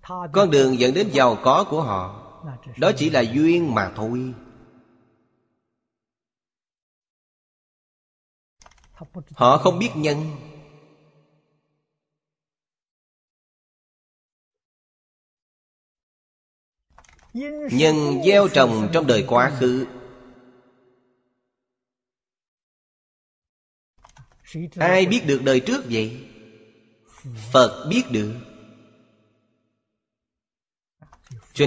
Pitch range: 120-150 Hz